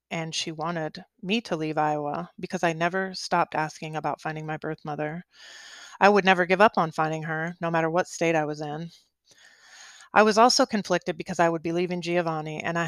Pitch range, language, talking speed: 160-190 Hz, English, 205 wpm